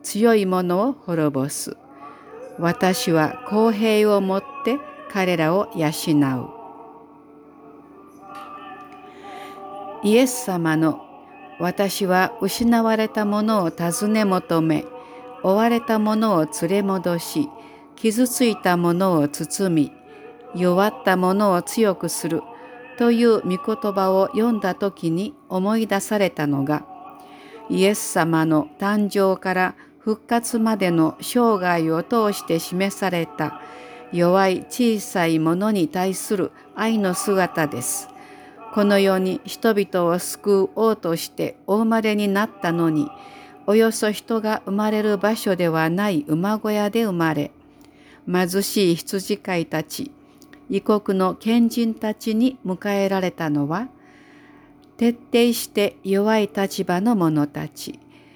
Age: 50-69